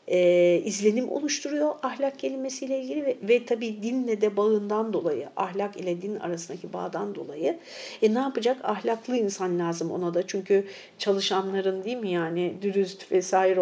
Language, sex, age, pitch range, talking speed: Turkish, female, 50-69, 185-235 Hz, 150 wpm